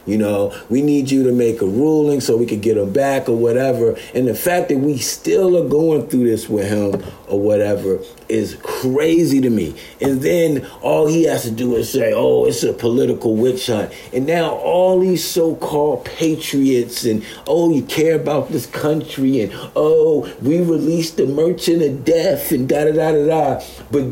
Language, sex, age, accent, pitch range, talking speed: English, male, 50-69, American, 125-175 Hz, 185 wpm